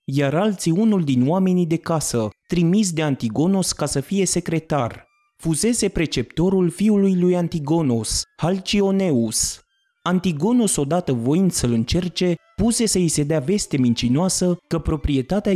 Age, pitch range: 30-49, 140-185 Hz